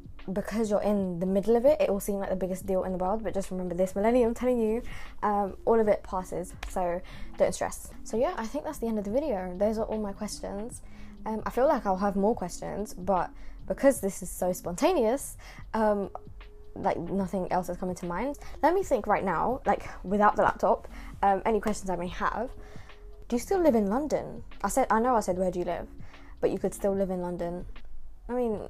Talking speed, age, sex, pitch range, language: 230 wpm, 10-29, female, 185-220 Hz, English